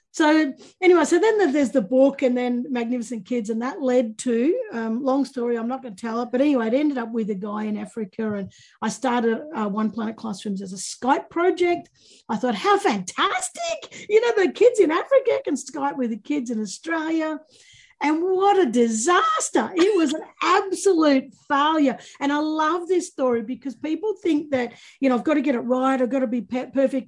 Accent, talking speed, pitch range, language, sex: Australian, 205 wpm, 235-330 Hz, English, female